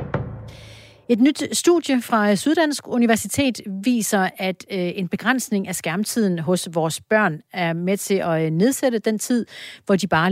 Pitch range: 170-225 Hz